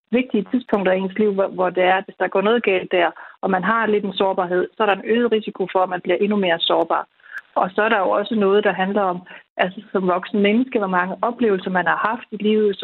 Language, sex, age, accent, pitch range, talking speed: Danish, female, 30-49, native, 190-225 Hz, 260 wpm